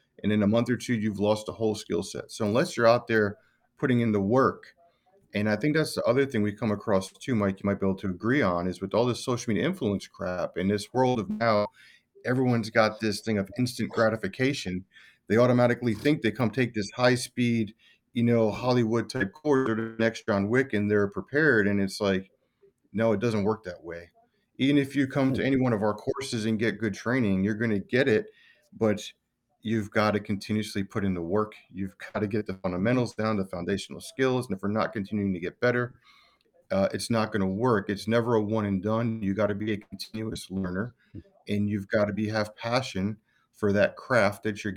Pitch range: 105-120 Hz